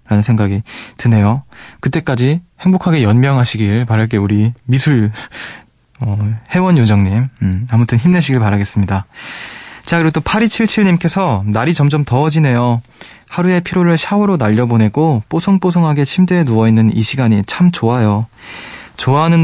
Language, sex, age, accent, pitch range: Korean, male, 20-39, native, 110-155 Hz